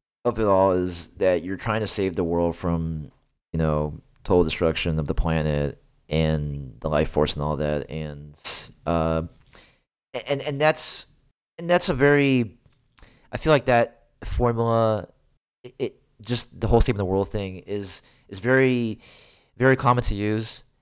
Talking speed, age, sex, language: 160 wpm, 30-49, male, English